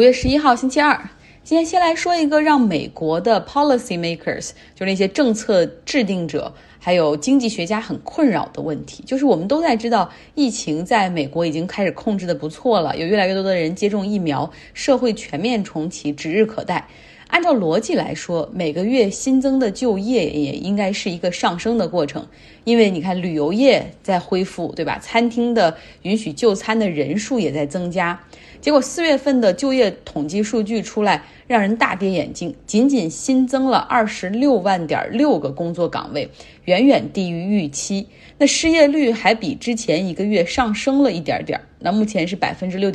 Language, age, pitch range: Chinese, 20-39, 175-255 Hz